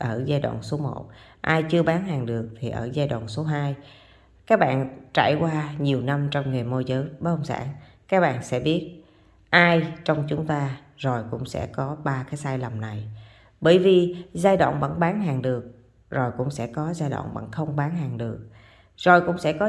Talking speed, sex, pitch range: 205 wpm, female, 120-165 Hz